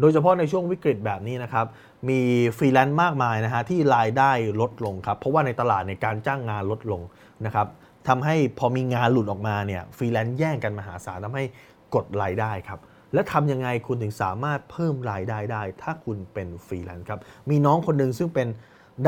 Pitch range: 110-155 Hz